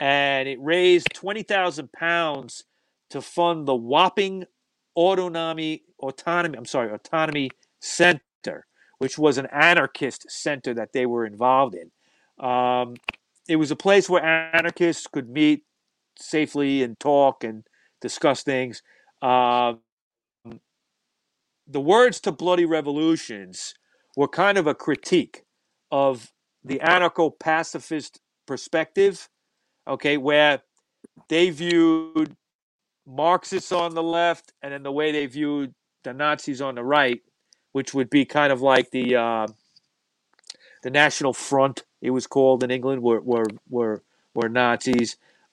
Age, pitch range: 40-59, 125-165 Hz